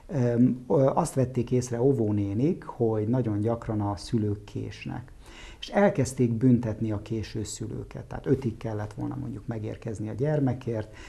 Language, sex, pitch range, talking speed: Hungarian, male, 110-135 Hz, 130 wpm